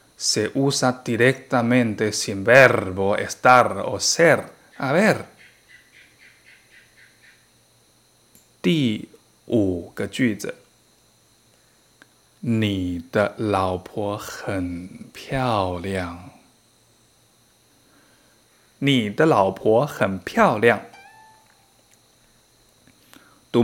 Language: Spanish